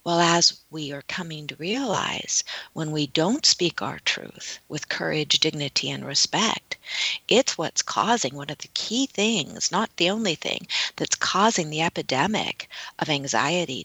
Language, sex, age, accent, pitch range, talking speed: English, female, 50-69, American, 160-200 Hz, 155 wpm